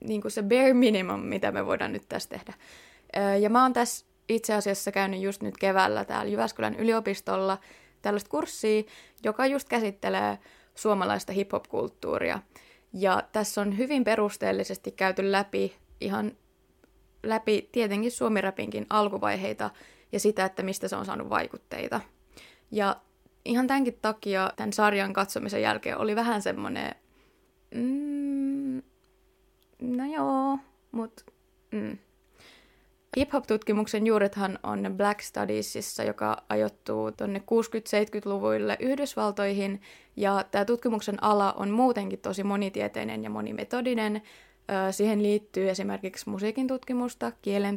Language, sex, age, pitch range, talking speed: Finnish, female, 20-39, 195-230 Hz, 115 wpm